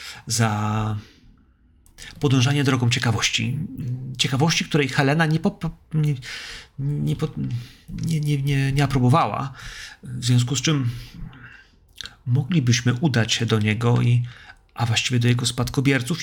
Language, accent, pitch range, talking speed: Polish, native, 110-145 Hz, 100 wpm